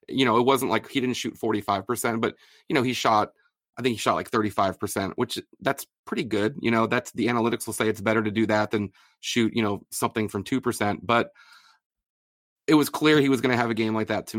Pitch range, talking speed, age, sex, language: 105-120 Hz, 240 wpm, 30-49, male, English